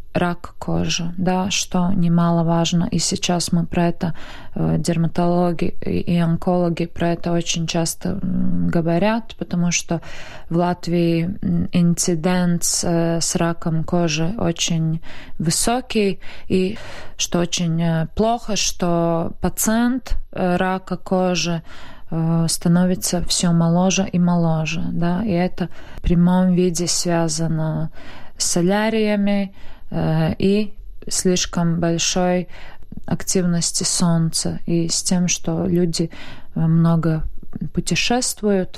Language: Russian